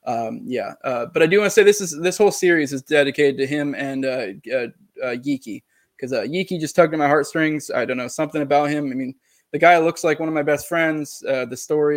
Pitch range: 140-155 Hz